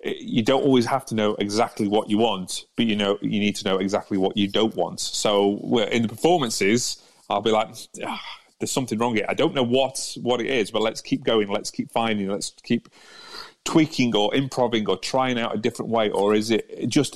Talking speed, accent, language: 215 wpm, British, English